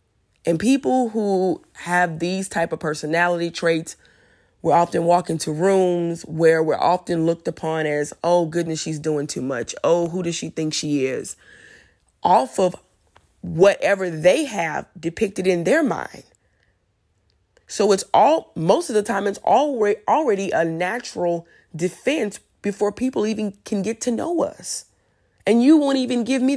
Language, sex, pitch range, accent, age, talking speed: English, female, 160-225 Hz, American, 20-39, 155 wpm